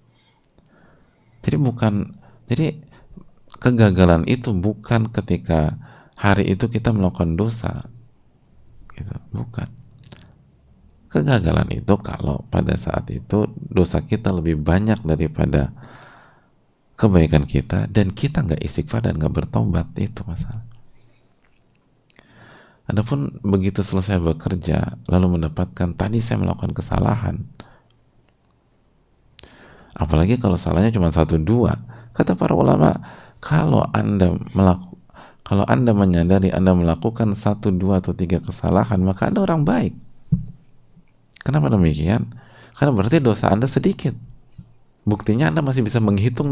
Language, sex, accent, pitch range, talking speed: Indonesian, male, native, 90-120 Hz, 110 wpm